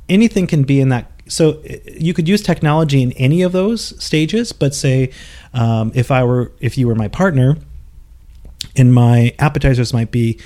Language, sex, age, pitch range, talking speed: English, male, 30-49, 115-155 Hz, 180 wpm